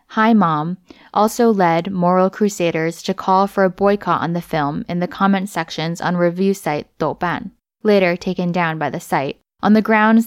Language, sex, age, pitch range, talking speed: English, female, 10-29, 175-210 Hz, 180 wpm